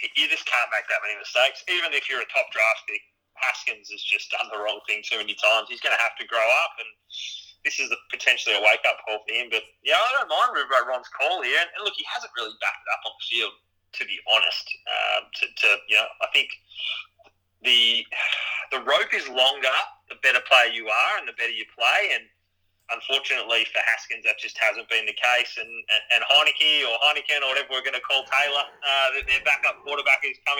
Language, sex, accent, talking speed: English, male, Australian, 235 wpm